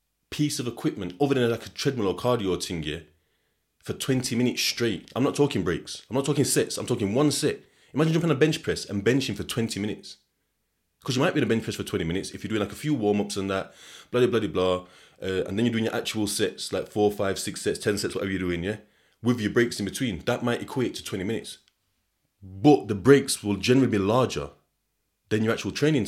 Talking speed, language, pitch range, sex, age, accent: 240 wpm, English, 100-135 Hz, male, 20-39, British